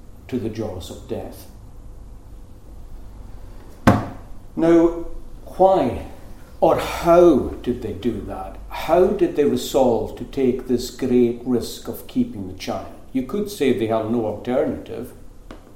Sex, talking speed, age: male, 125 wpm, 60-79